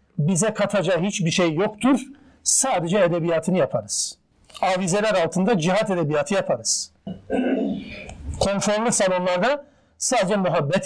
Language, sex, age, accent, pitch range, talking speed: Turkish, male, 50-69, native, 185-225 Hz, 95 wpm